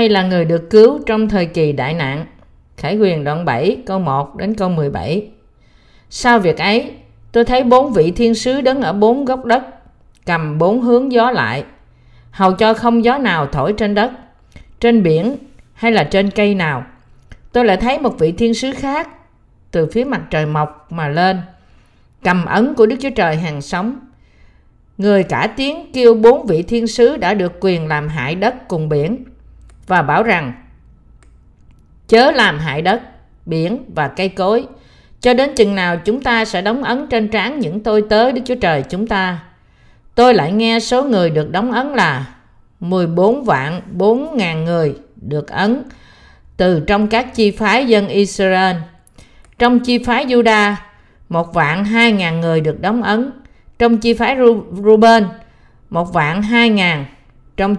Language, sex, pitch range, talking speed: Vietnamese, female, 165-235 Hz, 175 wpm